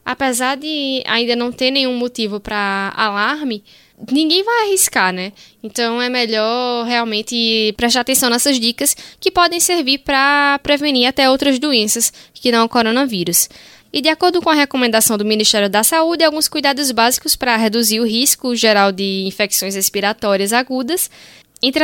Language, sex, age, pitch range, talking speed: Portuguese, female, 10-29, 220-275 Hz, 155 wpm